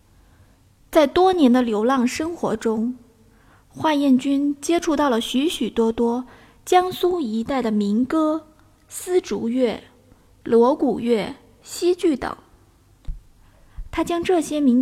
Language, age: Chinese, 20-39